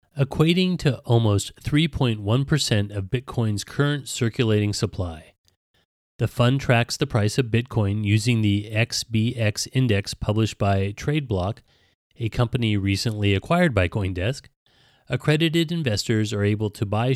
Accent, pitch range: American, 105-135 Hz